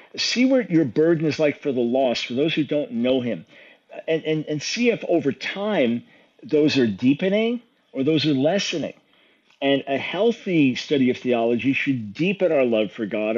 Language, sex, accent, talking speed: English, male, American, 185 wpm